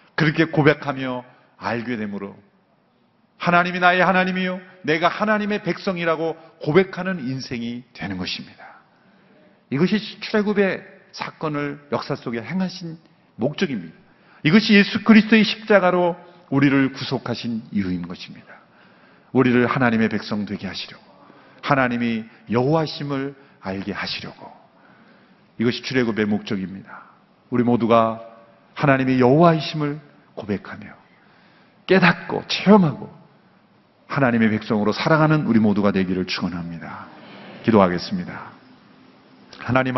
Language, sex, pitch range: Korean, male, 120-170 Hz